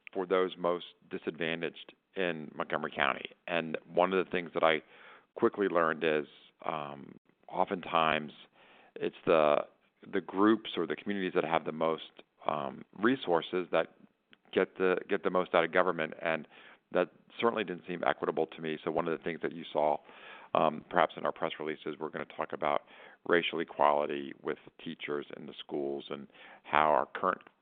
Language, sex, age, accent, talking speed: English, male, 50-69, American, 170 wpm